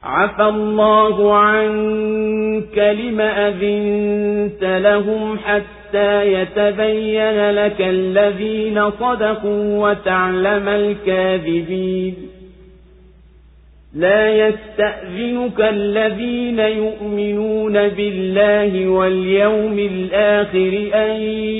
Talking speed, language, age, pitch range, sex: 60 wpm, Swahili, 50-69, 165-210 Hz, male